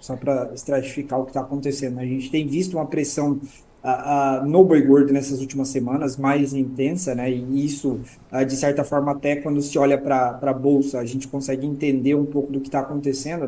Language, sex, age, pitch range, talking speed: Portuguese, male, 20-39, 135-160 Hz, 205 wpm